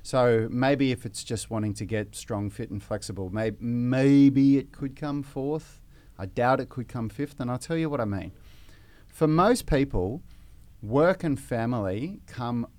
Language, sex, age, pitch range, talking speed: English, male, 30-49, 100-125 Hz, 180 wpm